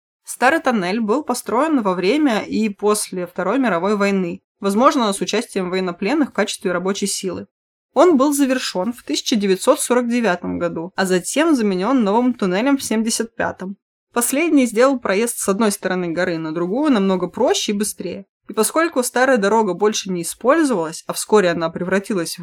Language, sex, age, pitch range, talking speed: Russian, female, 20-39, 180-235 Hz, 150 wpm